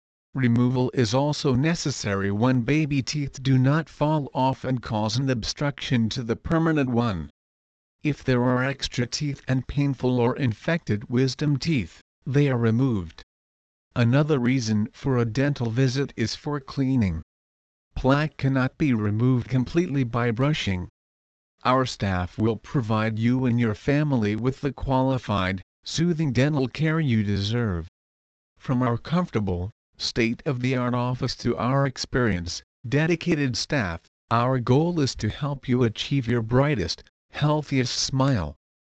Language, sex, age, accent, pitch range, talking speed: English, male, 50-69, American, 105-140 Hz, 135 wpm